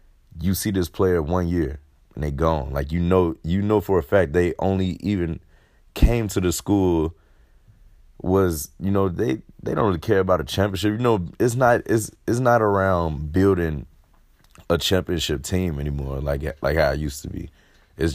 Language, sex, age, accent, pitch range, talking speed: English, male, 30-49, American, 75-90 Hz, 185 wpm